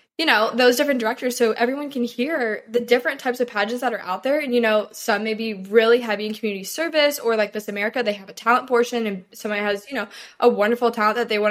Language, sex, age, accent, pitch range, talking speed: English, female, 10-29, American, 210-255 Hz, 255 wpm